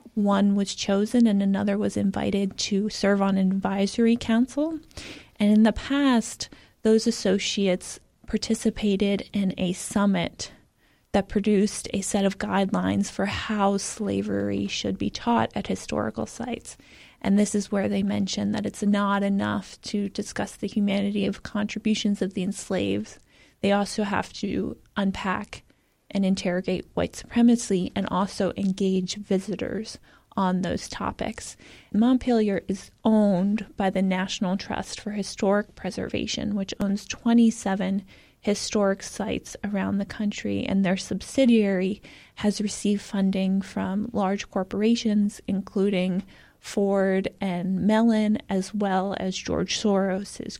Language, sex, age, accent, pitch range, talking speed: English, female, 20-39, American, 190-215 Hz, 130 wpm